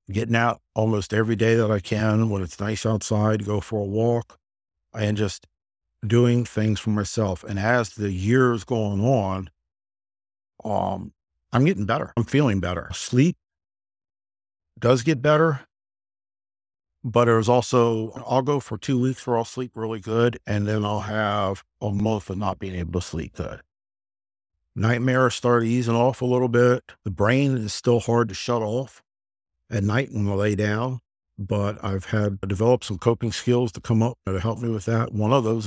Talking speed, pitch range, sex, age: 175 wpm, 95-115 Hz, male, 50-69